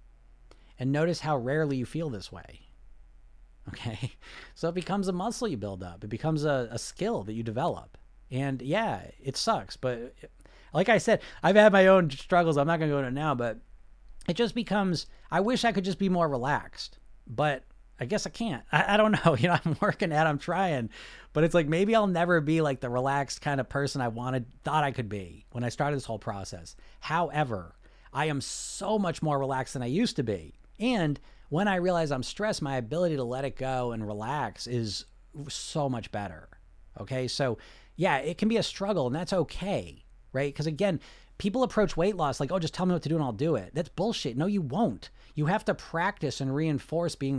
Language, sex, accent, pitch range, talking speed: English, male, American, 125-175 Hz, 215 wpm